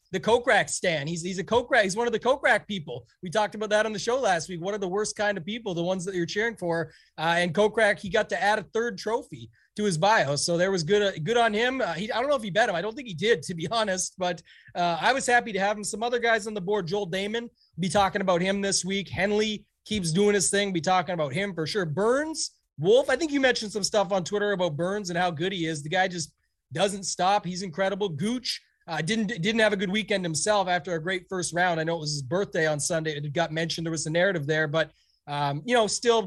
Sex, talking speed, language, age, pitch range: male, 275 wpm, English, 30-49, 175-215 Hz